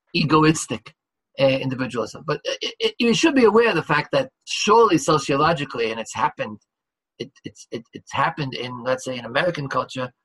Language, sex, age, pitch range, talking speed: English, male, 50-69, 140-180 Hz, 175 wpm